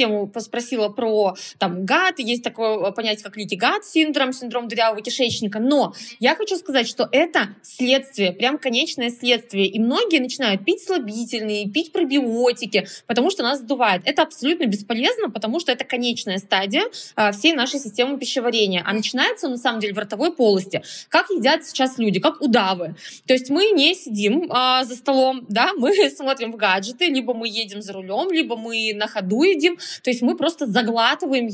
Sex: female